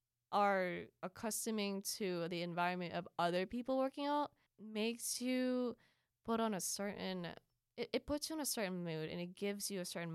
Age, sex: 20-39, female